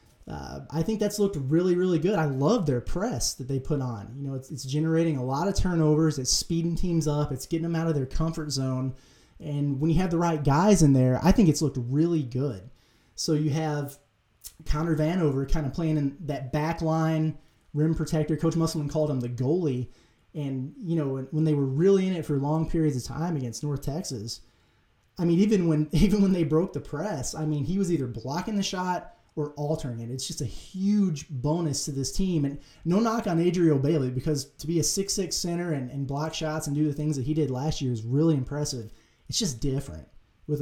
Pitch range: 135-165 Hz